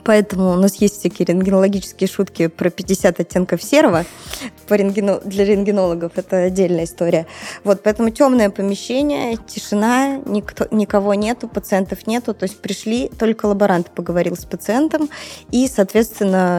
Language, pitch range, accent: Russian, 180-220 Hz, native